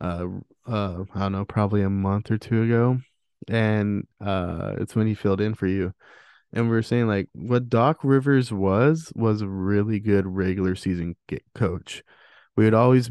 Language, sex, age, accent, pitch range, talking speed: English, male, 20-39, American, 100-125 Hz, 180 wpm